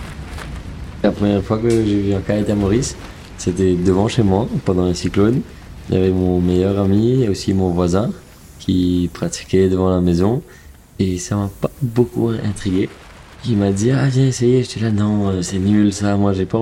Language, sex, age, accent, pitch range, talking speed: French, male, 20-39, French, 90-105 Hz, 200 wpm